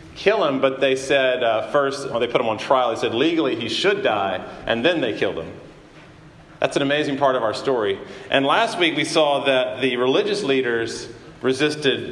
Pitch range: 125-155 Hz